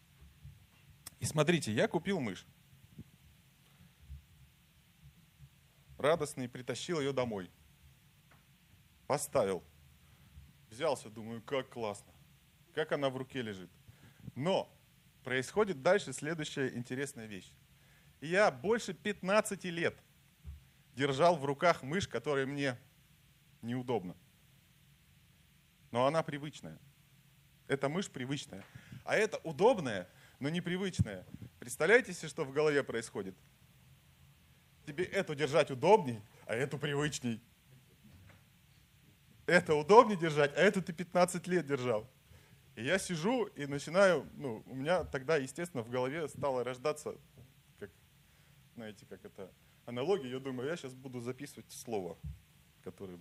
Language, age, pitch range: Russian, 30-49, 125-165 Hz